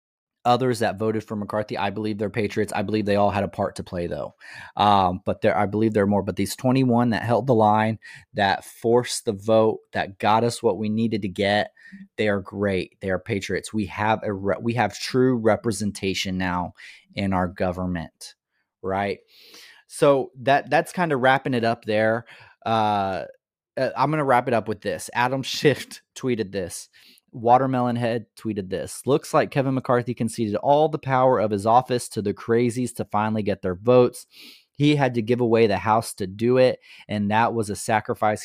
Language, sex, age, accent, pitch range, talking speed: English, male, 30-49, American, 100-120 Hz, 195 wpm